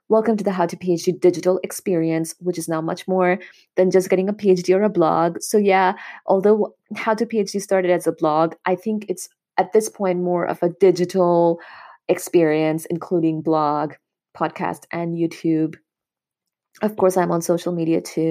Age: 20-39